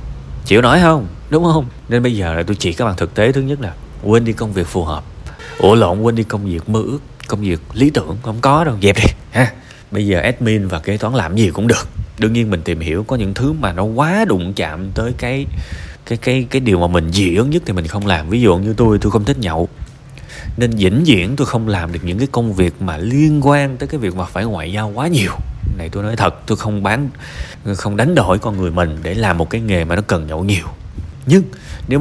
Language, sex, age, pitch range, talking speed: Vietnamese, male, 20-39, 90-130 Hz, 255 wpm